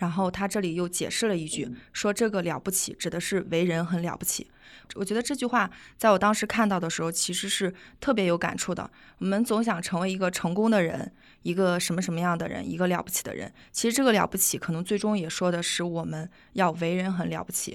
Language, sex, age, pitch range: Chinese, female, 20-39, 170-210 Hz